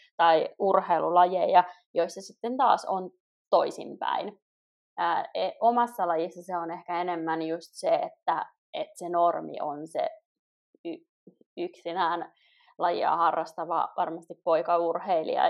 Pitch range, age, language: 175-245 Hz, 20-39, Finnish